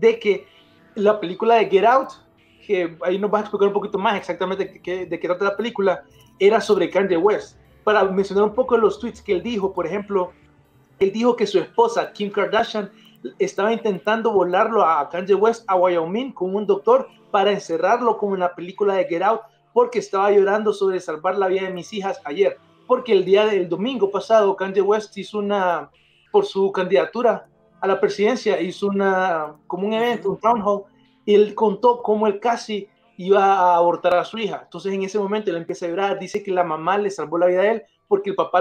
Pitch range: 185-215 Hz